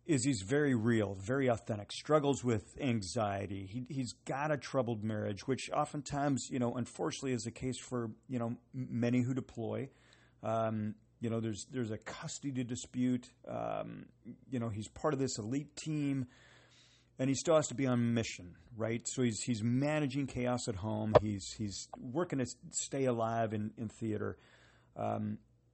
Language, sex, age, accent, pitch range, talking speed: English, male, 40-59, American, 115-135 Hz, 170 wpm